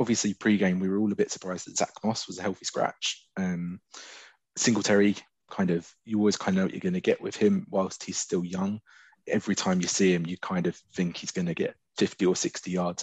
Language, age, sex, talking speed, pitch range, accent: English, 20-39, male, 240 wpm, 85-100 Hz, British